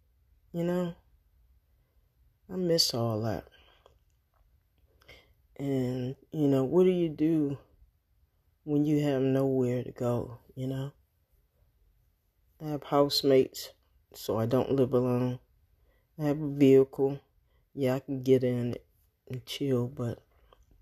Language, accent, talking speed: English, American, 120 wpm